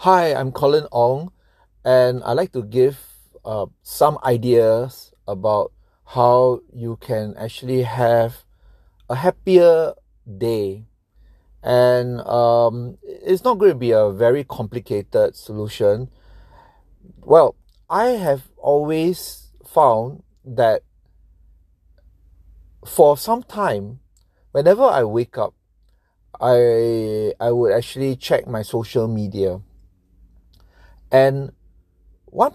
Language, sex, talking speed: English, male, 100 wpm